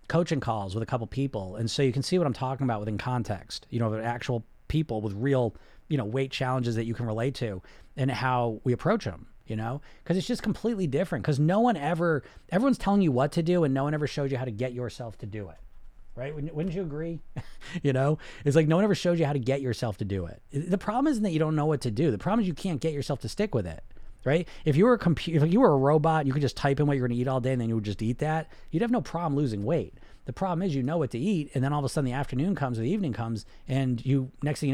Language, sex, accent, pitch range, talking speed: English, male, American, 115-160 Hz, 295 wpm